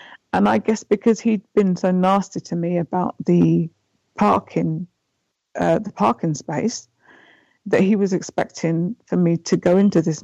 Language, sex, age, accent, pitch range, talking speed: English, female, 50-69, British, 170-215 Hz, 160 wpm